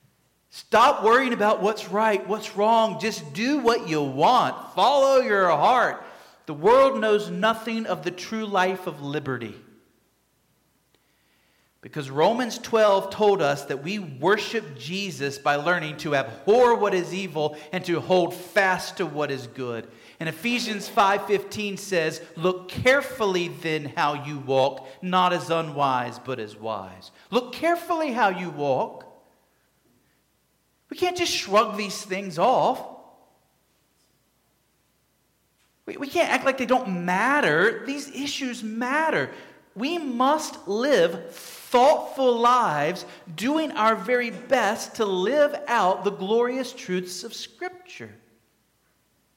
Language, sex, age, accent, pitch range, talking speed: English, male, 40-59, American, 175-255 Hz, 130 wpm